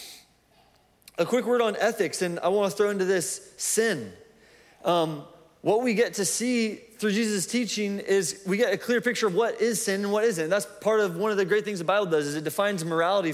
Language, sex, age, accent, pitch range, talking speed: English, male, 30-49, American, 185-230 Hz, 220 wpm